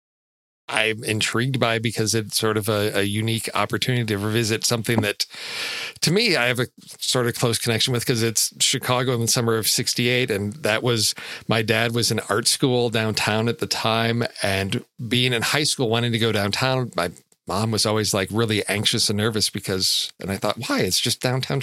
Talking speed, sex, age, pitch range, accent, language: 200 wpm, male, 40-59, 110-130 Hz, American, English